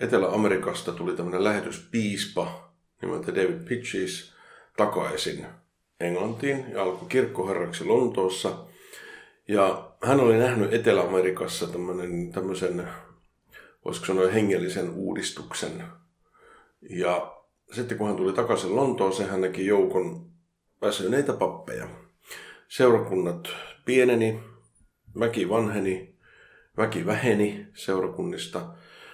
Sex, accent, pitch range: male, native, 90-115 Hz